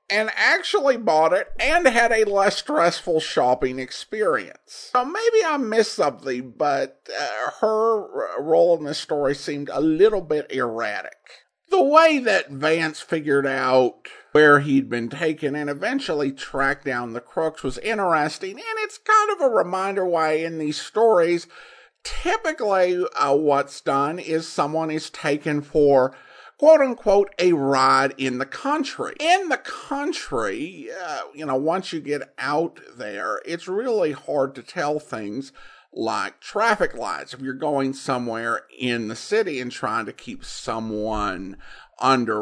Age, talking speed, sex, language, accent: 50-69, 145 wpm, male, English, American